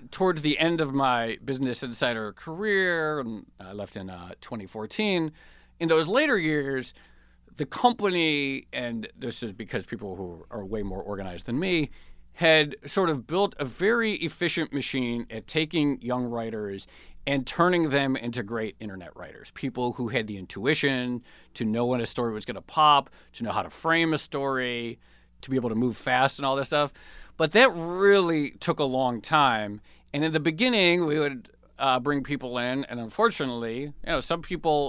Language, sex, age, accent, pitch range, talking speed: English, male, 40-59, American, 110-155 Hz, 180 wpm